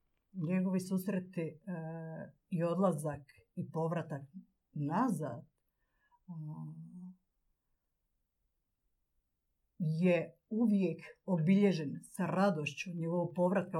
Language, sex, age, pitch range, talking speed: Croatian, female, 50-69, 155-185 Hz, 60 wpm